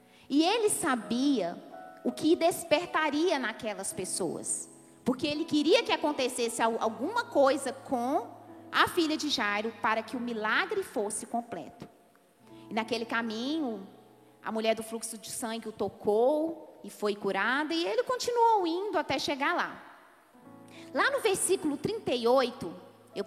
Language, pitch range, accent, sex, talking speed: Portuguese, 230-365 Hz, Brazilian, female, 130 wpm